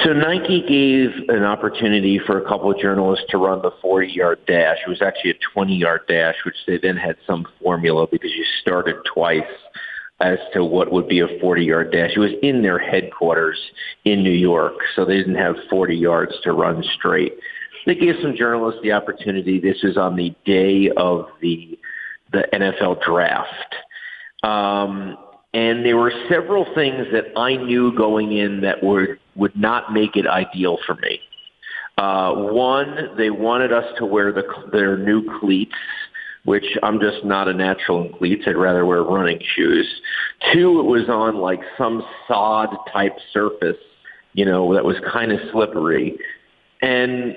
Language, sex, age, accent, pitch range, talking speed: English, male, 50-69, American, 95-130 Hz, 165 wpm